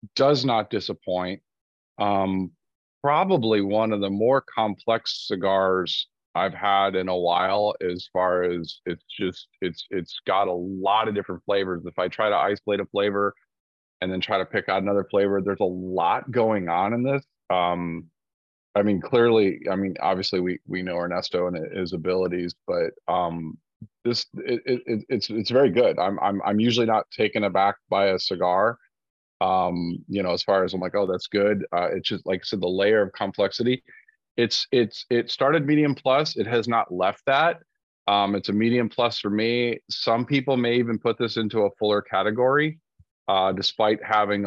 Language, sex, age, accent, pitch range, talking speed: English, male, 30-49, American, 95-115 Hz, 185 wpm